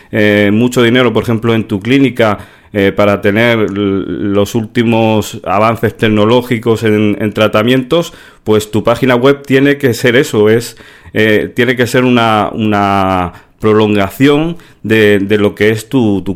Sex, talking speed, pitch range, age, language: male, 155 wpm, 100-130 Hz, 40-59, Spanish